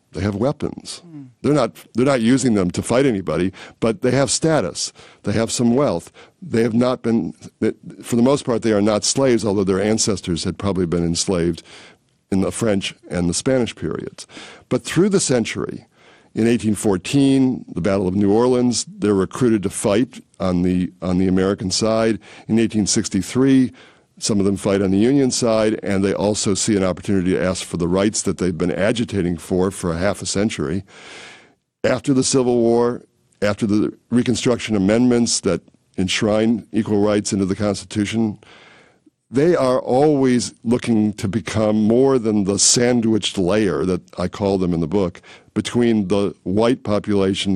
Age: 60-79